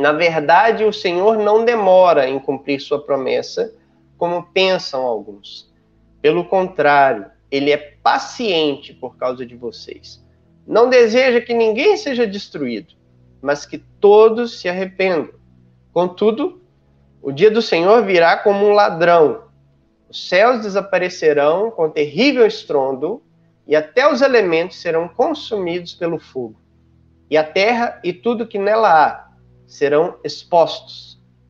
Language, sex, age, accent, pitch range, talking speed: Portuguese, male, 30-49, Brazilian, 145-220 Hz, 125 wpm